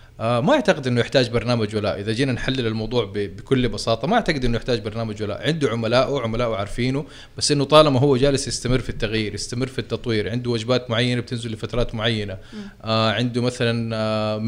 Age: 20-39